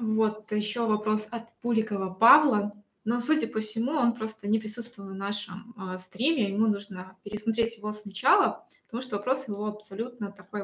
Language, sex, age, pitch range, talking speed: Russian, female, 20-39, 205-245 Hz, 165 wpm